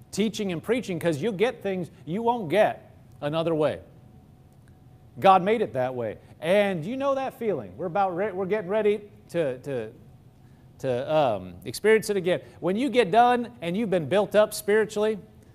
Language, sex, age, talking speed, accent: English, male, 40-59, 175 wpm, American